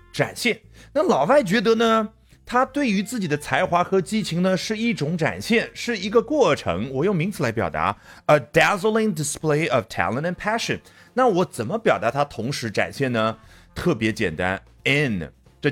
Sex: male